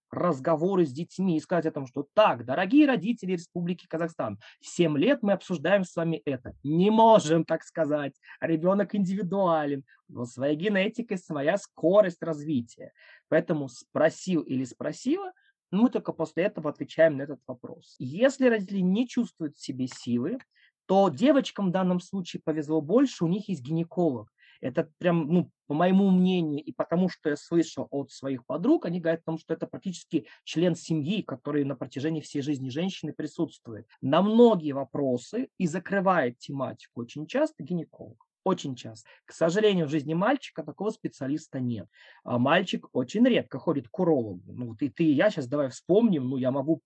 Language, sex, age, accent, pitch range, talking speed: Russian, male, 20-39, native, 145-190 Hz, 165 wpm